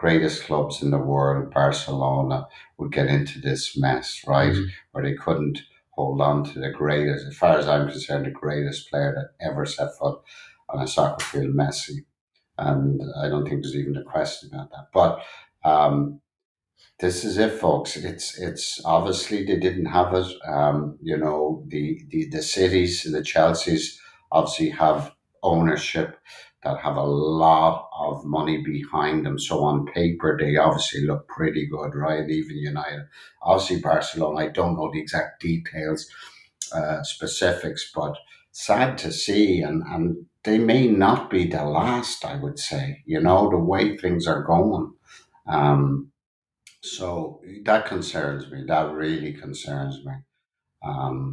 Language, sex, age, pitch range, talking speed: English, male, 60-79, 70-90 Hz, 155 wpm